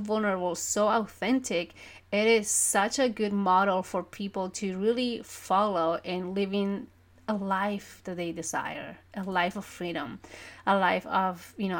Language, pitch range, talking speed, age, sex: English, 185-225 Hz, 155 wpm, 30-49, female